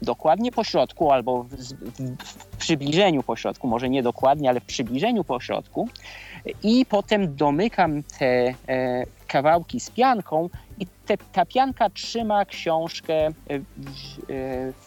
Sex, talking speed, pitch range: male, 135 wpm, 135-195 Hz